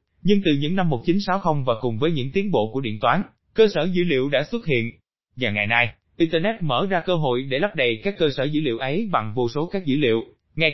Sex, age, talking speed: male, 20-39, 250 wpm